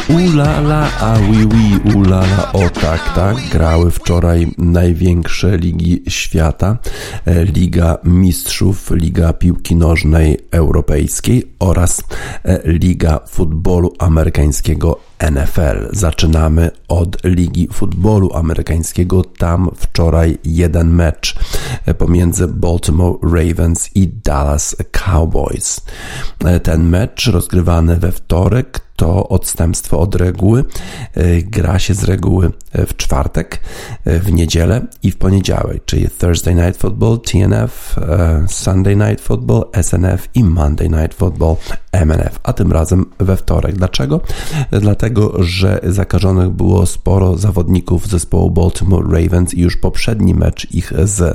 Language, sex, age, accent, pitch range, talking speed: Polish, male, 50-69, native, 85-95 Hz, 110 wpm